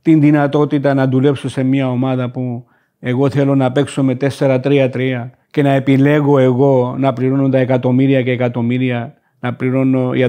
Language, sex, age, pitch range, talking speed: Greek, male, 50-69, 130-175 Hz, 155 wpm